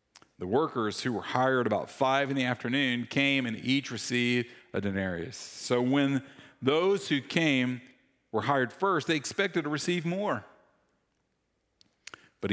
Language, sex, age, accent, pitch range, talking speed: English, male, 50-69, American, 100-140 Hz, 145 wpm